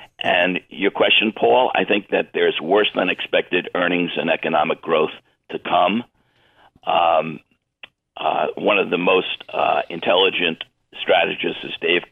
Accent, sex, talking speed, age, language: American, male, 140 wpm, 60-79, English